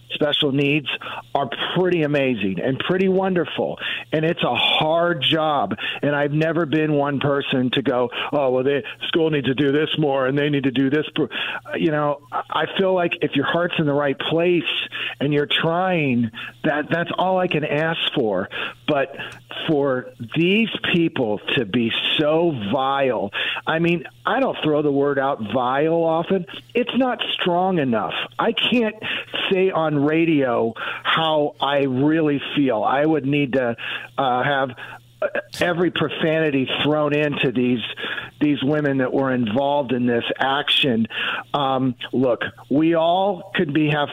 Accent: American